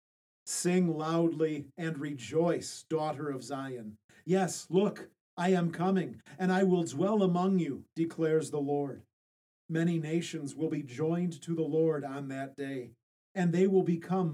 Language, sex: English, male